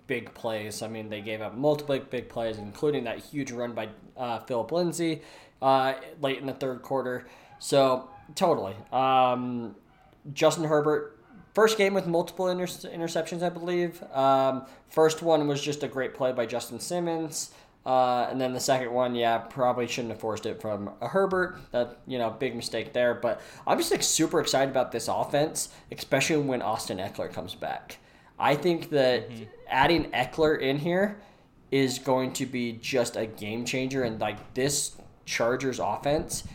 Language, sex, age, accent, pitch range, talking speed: English, male, 20-39, American, 115-150 Hz, 170 wpm